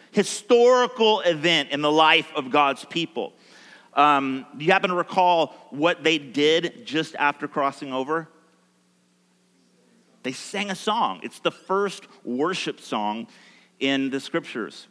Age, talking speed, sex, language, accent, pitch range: 40-59, 130 wpm, male, English, American, 145-205 Hz